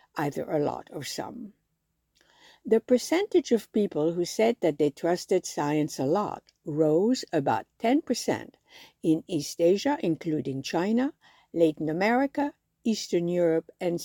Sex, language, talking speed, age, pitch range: female, English, 130 wpm, 60-79, 150-230 Hz